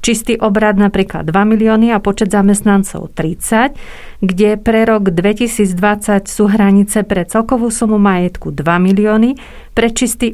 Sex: female